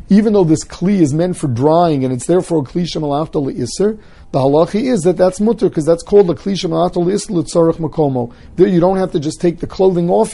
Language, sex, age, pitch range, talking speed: English, male, 40-59, 140-170 Hz, 220 wpm